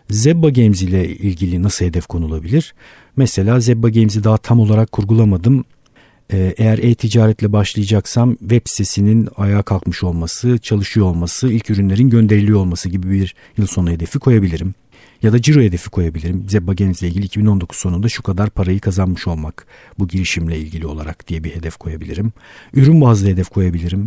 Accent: native